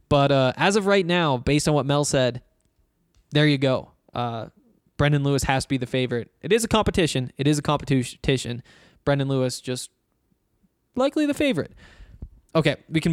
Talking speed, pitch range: 180 wpm, 125-155 Hz